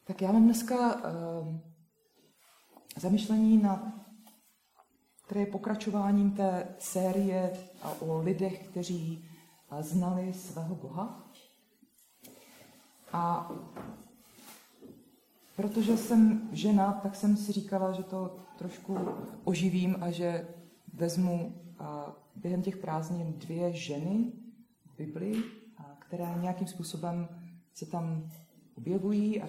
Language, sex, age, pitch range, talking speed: Czech, female, 30-49, 170-210 Hz, 95 wpm